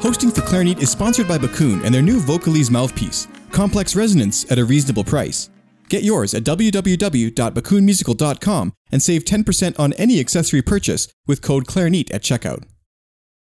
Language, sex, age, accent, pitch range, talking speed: English, male, 30-49, American, 120-180 Hz, 150 wpm